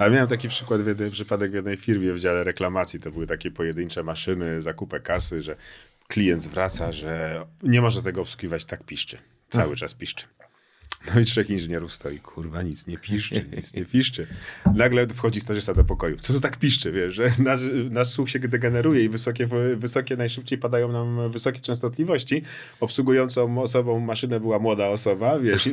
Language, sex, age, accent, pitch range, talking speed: Polish, male, 40-59, native, 105-130 Hz, 180 wpm